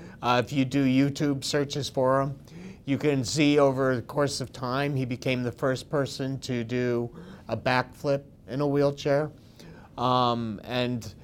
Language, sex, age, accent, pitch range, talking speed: English, male, 30-49, American, 120-150 Hz, 160 wpm